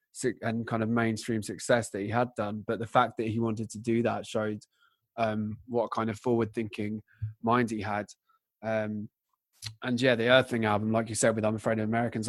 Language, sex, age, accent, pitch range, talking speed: English, male, 20-39, British, 110-120 Hz, 205 wpm